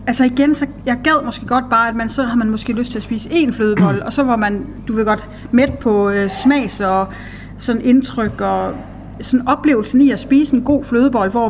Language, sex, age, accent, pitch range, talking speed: Danish, female, 30-49, native, 205-250 Hz, 230 wpm